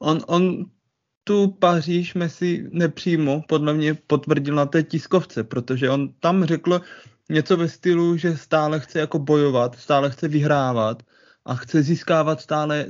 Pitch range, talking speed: 130-160 Hz, 145 wpm